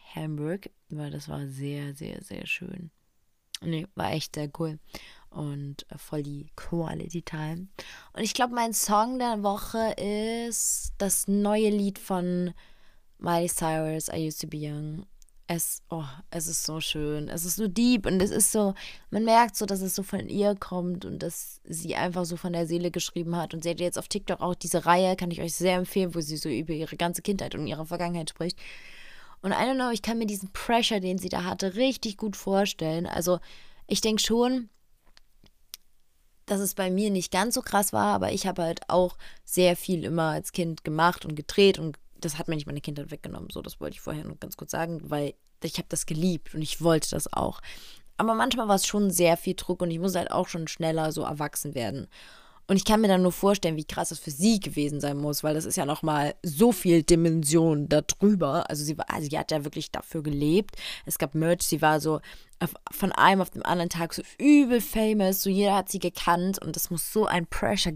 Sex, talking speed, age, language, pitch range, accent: female, 215 wpm, 20-39, German, 160-195 Hz, German